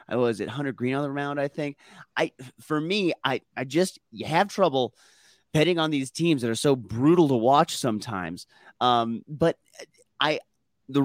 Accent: American